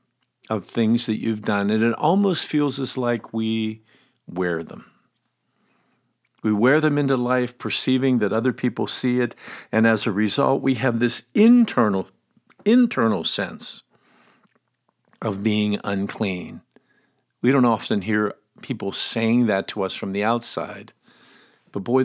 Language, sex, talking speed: English, male, 140 wpm